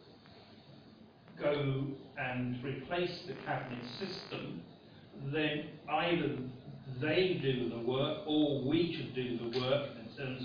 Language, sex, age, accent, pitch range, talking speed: English, male, 50-69, British, 125-150 Hz, 110 wpm